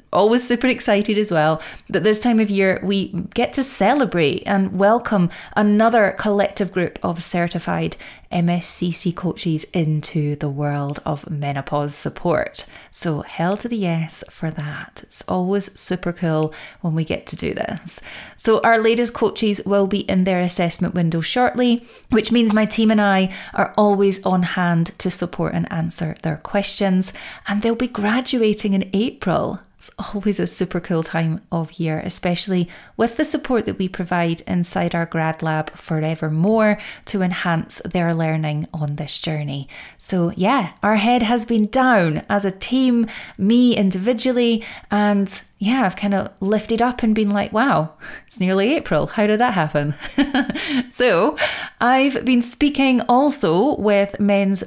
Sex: female